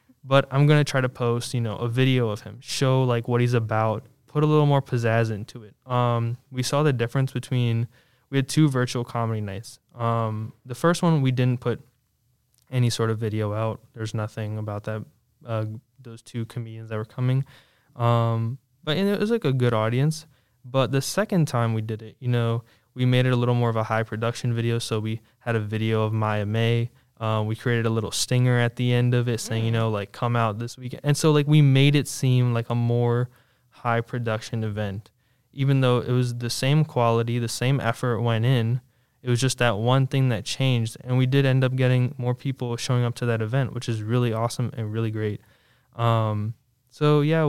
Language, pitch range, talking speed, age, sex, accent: English, 115-130 Hz, 215 wpm, 10-29, male, American